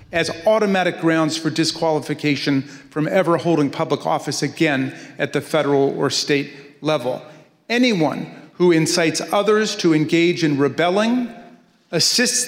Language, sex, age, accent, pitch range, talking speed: English, male, 40-59, American, 155-200 Hz, 125 wpm